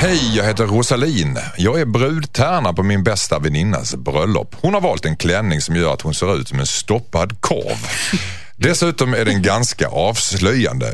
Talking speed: 175 wpm